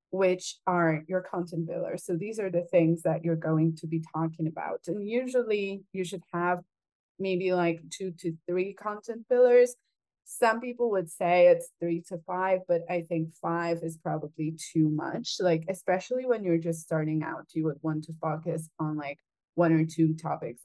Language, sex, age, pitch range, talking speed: English, female, 20-39, 165-190 Hz, 185 wpm